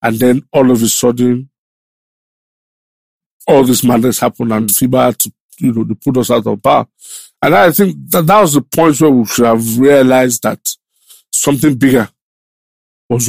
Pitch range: 125-180 Hz